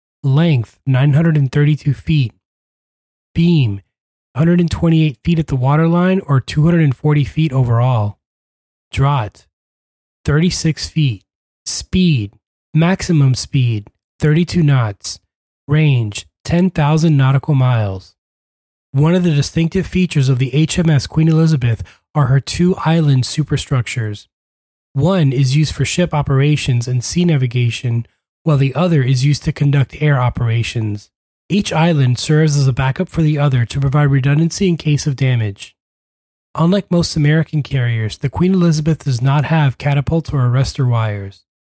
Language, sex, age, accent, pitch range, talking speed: English, male, 20-39, American, 120-160 Hz, 125 wpm